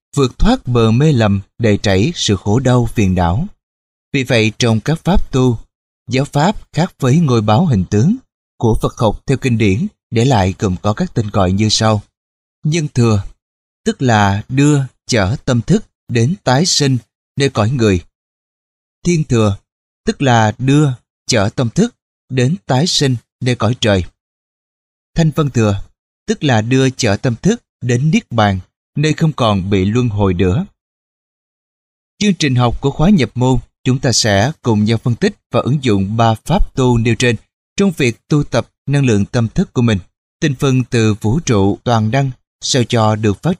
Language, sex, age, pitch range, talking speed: Vietnamese, male, 20-39, 105-135 Hz, 180 wpm